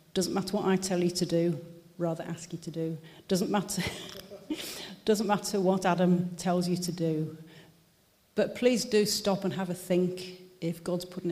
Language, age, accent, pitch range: English, 40-59, British, 165-195 Hz